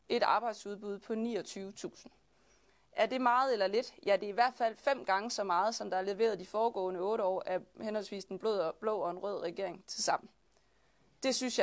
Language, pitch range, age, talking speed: Danish, 195-240 Hz, 30-49, 205 wpm